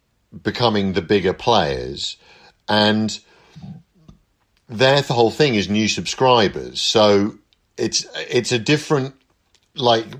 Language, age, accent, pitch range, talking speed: English, 50-69, British, 100-130 Hz, 105 wpm